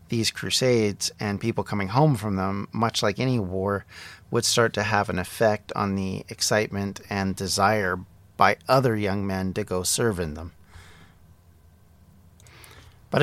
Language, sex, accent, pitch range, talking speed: English, male, American, 95-125 Hz, 150 wpm